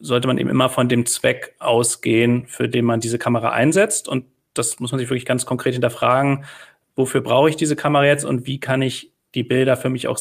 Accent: German